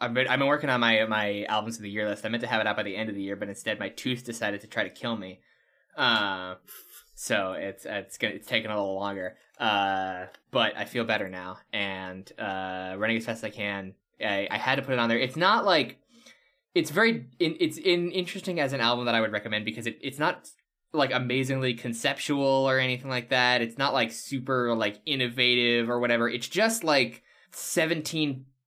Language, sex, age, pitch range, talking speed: English, male, 10-29, 105-130 Hz, 220 wpm